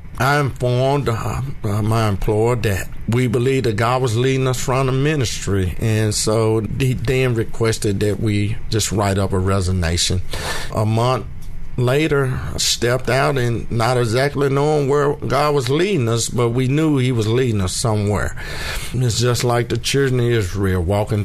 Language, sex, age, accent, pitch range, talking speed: English, male, 50-69, American, 100-125 Hz, 165 wpm